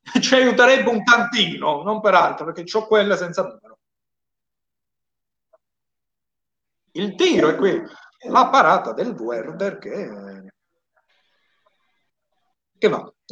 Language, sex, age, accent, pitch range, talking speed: Italian, male, 50-69, native, 175-235 Hz, 110 wpm